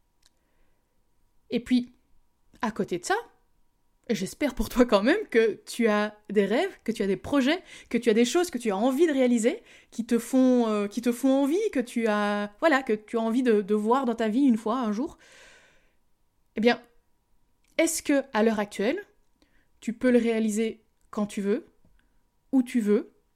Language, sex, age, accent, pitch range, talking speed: French, female, 20-39, French, 200-250 Hz, 195 wpm